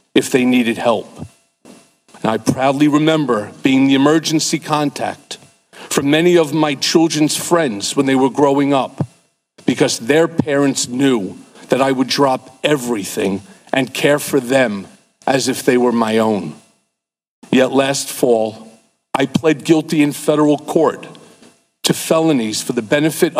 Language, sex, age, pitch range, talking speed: English, male, 50-69, 125-150 Hz, 145 wpm